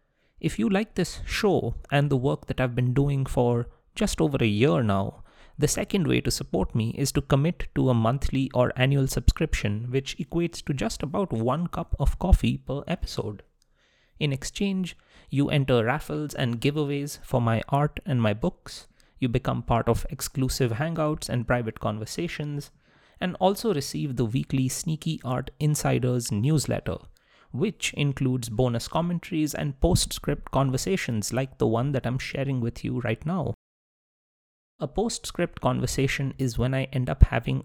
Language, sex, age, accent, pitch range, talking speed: English, male, 30-49, Indian, 120-150 Hz, 160 wpm